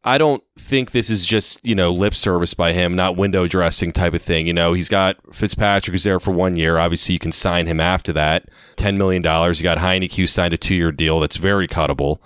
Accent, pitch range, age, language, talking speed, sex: American, 90-110 Hz, 30-49, English, 240 wpm, male